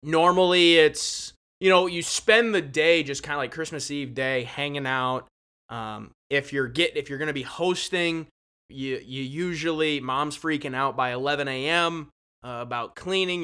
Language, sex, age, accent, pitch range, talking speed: English, male, 20-39, American, 130-160 Hz, 170 wpm